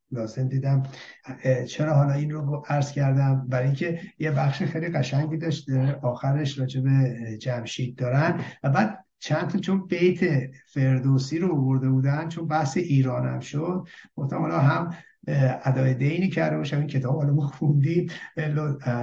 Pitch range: 130-165 Hz